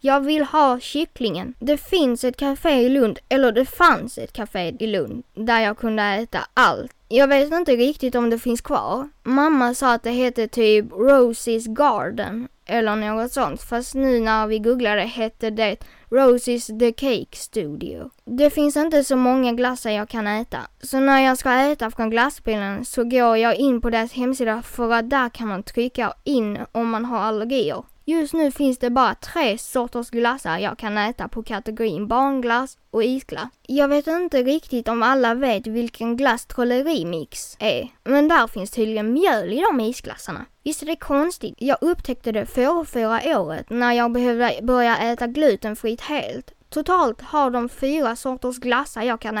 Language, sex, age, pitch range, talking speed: Swedish, female, 20-39, 225-270 Hz, 180 wpm